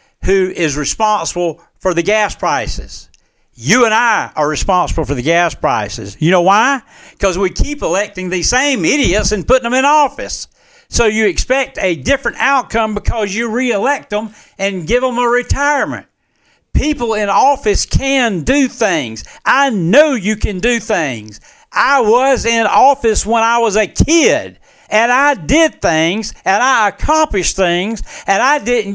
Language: English